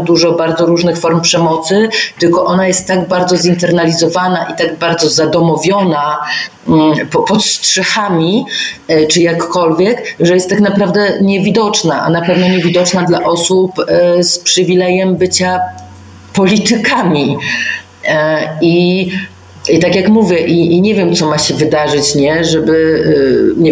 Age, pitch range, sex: 40-59, 150-180 Hz, female